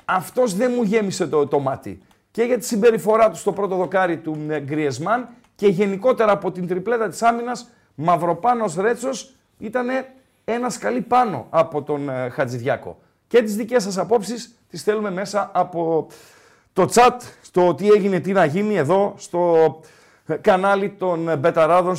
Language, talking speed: Greek, 150 wpm